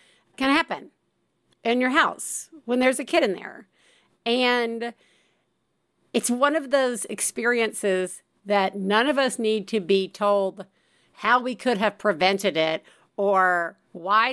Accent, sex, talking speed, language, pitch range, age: American, female, 140 wpm, English, 190-270 Hz, 50-69